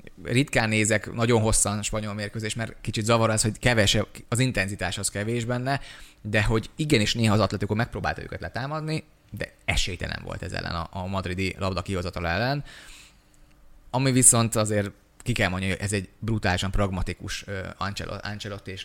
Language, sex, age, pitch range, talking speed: Hungarian, male, 20-39, 95-115 Hz, 165 wpm